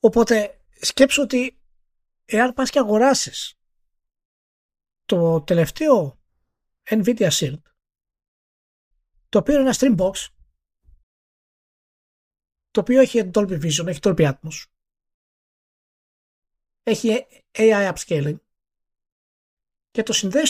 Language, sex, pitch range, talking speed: Greek, male, 140-230 Hz, 90 wpm